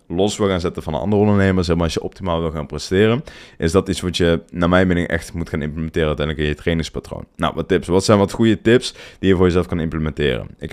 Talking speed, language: 255 wpm, Dutch